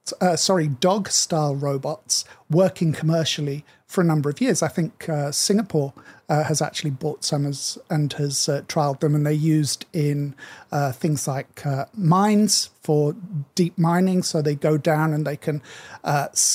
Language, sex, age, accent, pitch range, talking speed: English, male, 50-69, British, 145-180 Hz, 165 wpm